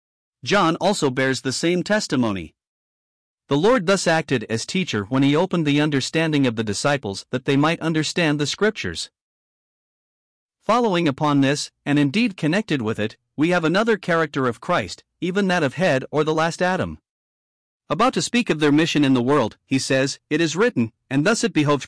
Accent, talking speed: American, 180 wpm